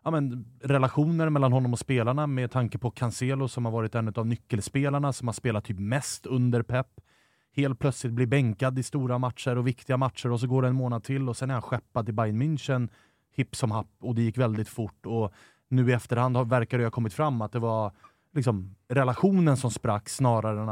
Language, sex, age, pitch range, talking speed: Swedish, male, 30-49, 110-130 Hz, 225 wpm